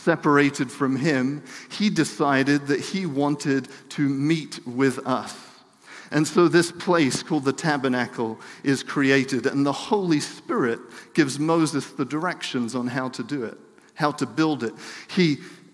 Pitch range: 130-165 Hz